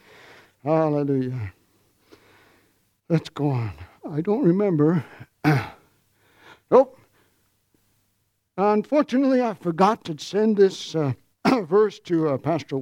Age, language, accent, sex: 60-79, English, American, male